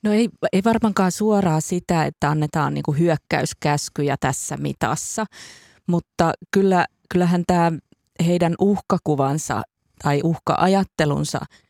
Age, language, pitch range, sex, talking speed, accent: 30-49, Finnish, 150-165 Hz, female, 95 wpm, native